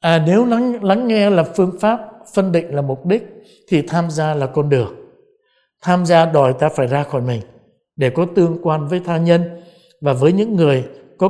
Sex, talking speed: male, 205 wpm